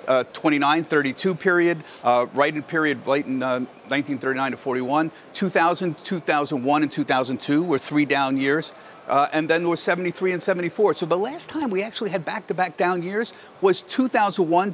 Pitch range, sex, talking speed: 135-175 Hz, male, 170 wpm